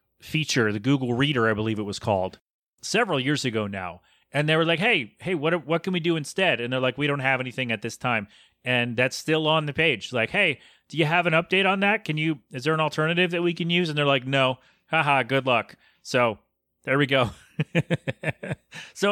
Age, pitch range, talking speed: 30-49, 120-160 Hz, 225 wpm